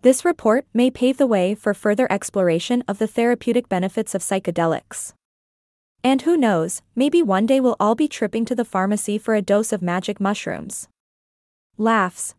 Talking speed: 170 wpm